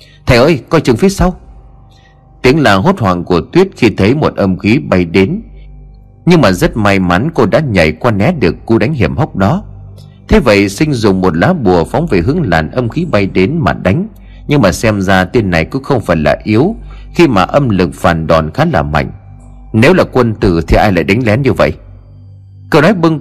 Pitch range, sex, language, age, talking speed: 90-130 Hz, male, Vietnamese, 30-49, 220 wpm